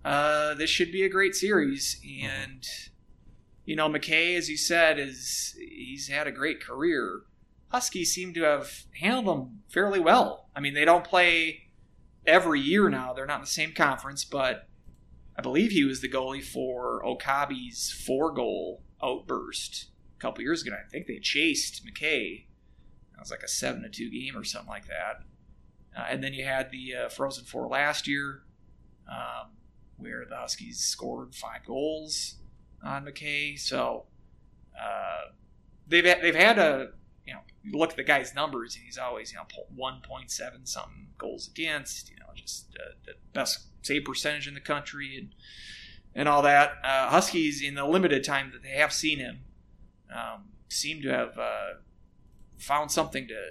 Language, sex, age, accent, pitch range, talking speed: English, male, 30-49, American, 135-170 Hz, 175 wpm